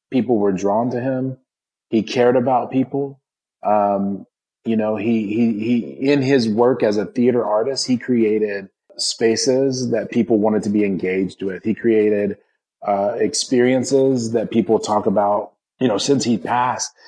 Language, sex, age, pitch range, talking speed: English, male, 30-49, 100-120 Hz, 160 wpm